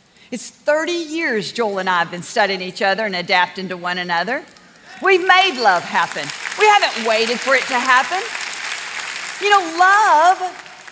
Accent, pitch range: American, 220-330 Hz